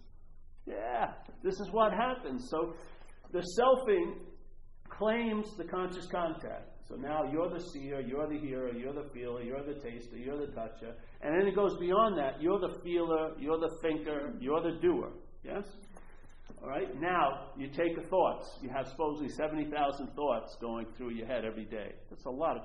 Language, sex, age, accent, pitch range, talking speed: English, male, 50-69, American, 135-200 Hz, 175 wpm